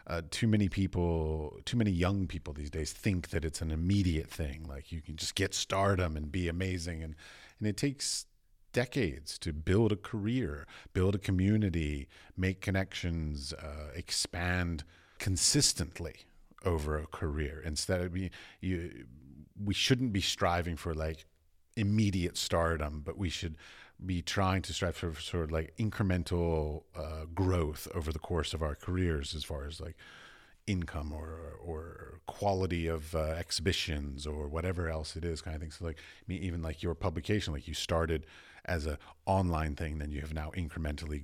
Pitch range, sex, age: 80-95 Hz, male, 40-59